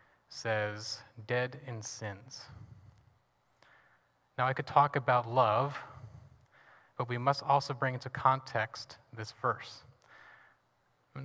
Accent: American